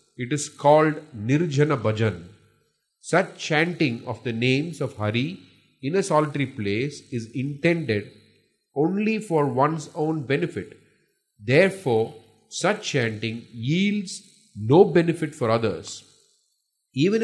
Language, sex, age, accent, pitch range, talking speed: English, male, 30-49, Indian, 125-170 Hz, 110 wpm